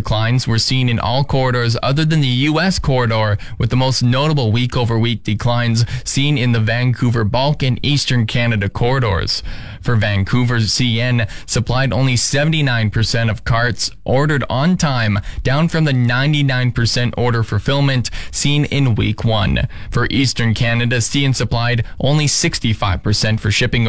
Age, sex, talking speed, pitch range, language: 20-39, male, 140 wpm, 110-135 Hz, English